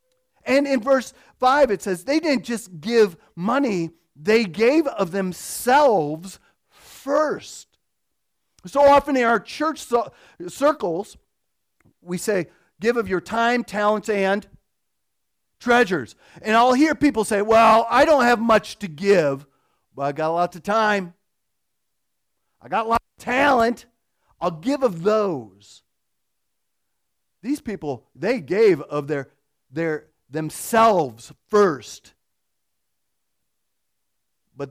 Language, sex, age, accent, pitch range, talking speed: English, male, 40-59, American, 140-225 Hz, 120 wpm